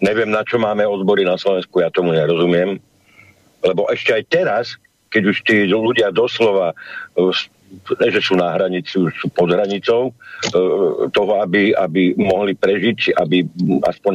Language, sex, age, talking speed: Slovak, male, 60-79, 140 wpm